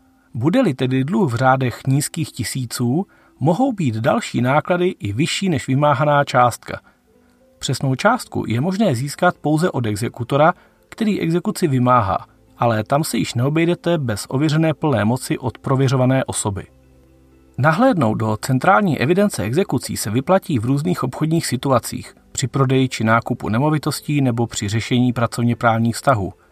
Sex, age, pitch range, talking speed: male, 40-59, 115-165 Hz, 135 wpm